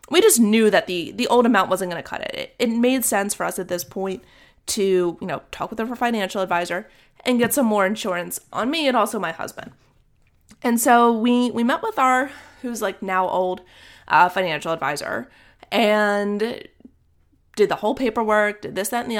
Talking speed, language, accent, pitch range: 205 wpm, English, American, 180-240 Hz